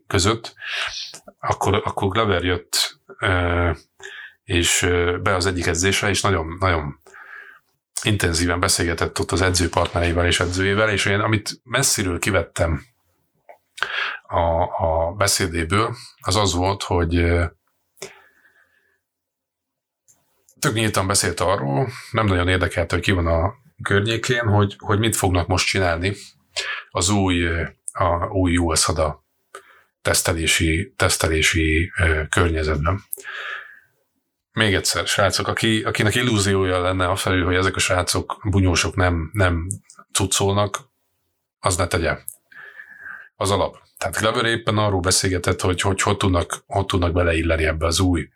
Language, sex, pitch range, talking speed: Hungarian, male, 85-100 Hz, 115 wpm